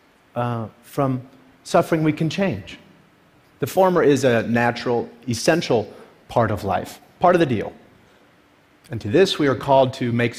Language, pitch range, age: English, 115-145 Hz, 40-59